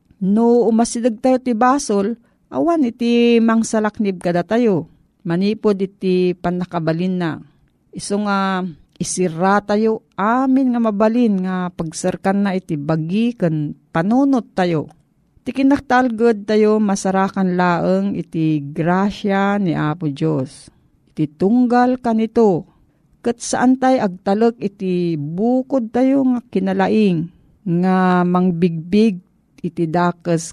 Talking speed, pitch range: 105 wpm, 175-230 Hz